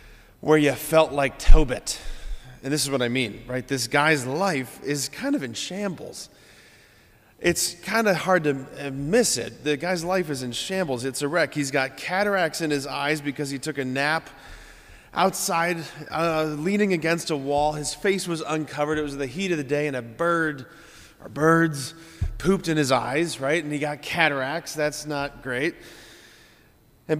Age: 30-49